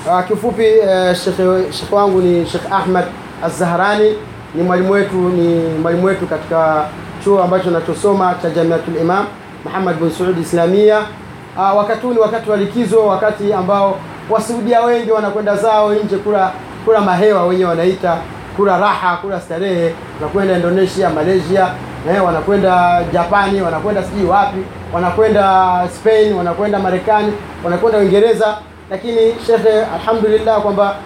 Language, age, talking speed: Swahili, 30-49, 130 wpm